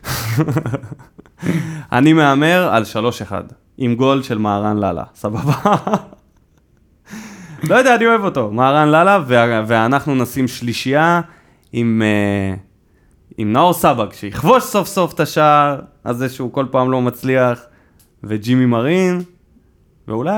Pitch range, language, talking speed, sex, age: 110-155 Hz, Hebrew, 110 wpm, male, 20-39